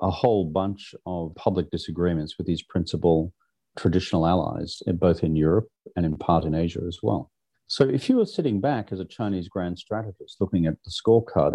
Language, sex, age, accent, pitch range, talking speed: English, male, 40-59, Australian, 85-100 Hz, 185 wpm